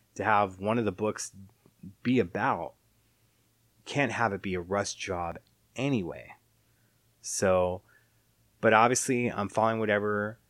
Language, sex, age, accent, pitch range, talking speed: English, male, 30-49, American, 95-115 Hz, 125 wpm